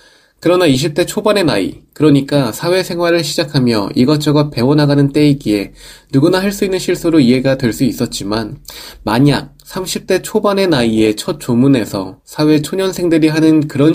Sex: male